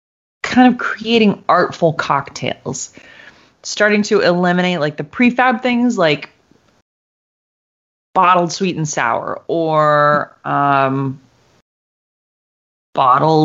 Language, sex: English, female